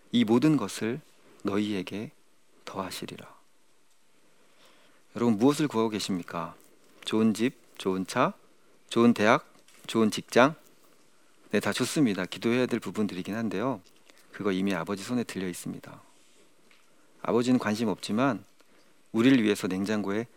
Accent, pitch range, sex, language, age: native, 100-140 Hz, male, Korean, 40-59